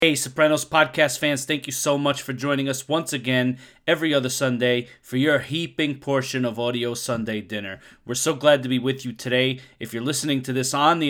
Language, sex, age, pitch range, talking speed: English, male, 30-49, 125-150 Hz, 210 wpm